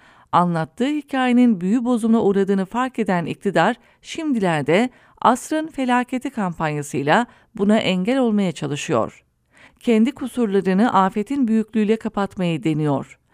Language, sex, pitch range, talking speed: English, female, 190-240 Hz, 100 wpm